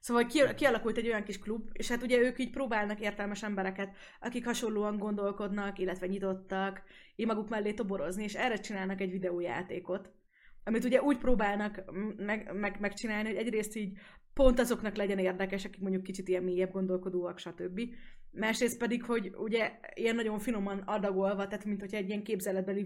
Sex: female